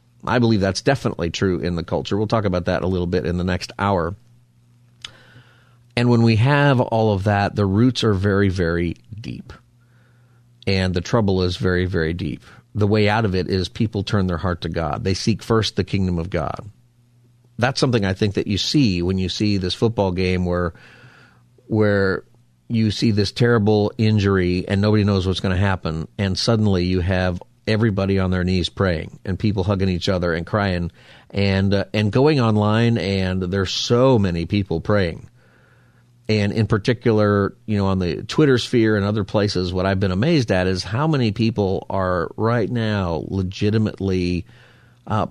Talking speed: 185 wpm